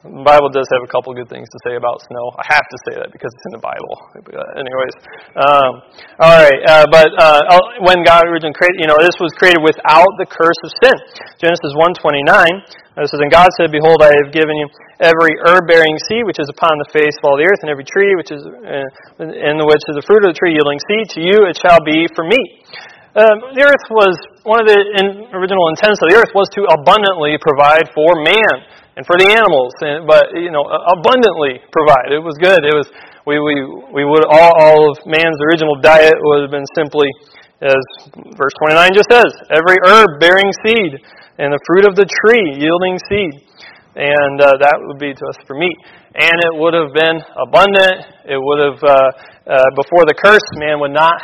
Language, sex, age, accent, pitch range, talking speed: English, male, 30-49, American, 145-185 Hz, 210 wpm